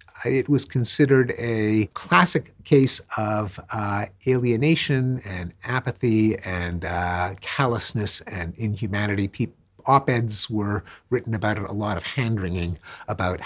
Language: English